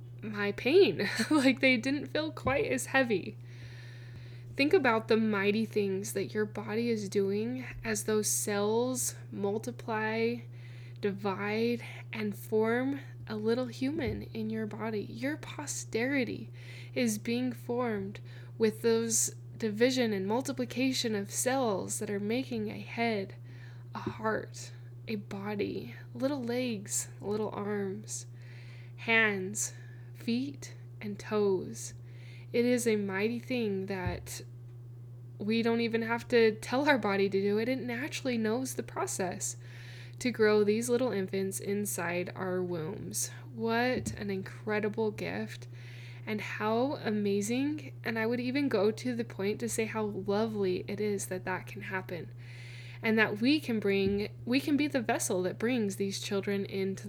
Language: English